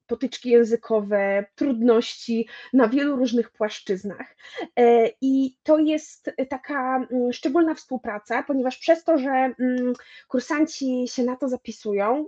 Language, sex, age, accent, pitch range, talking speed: Polish, female, 20-39, native, 235-305 Hz, 110 wpm